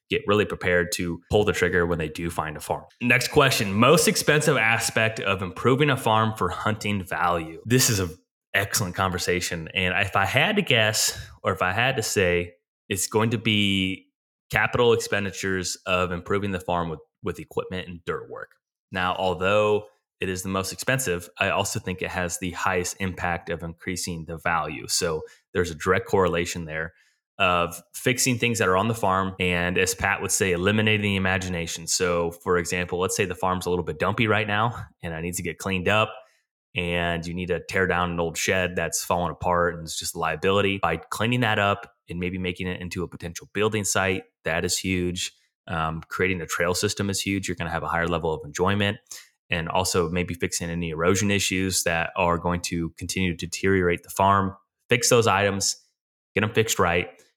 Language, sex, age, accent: English, male, 20-39, American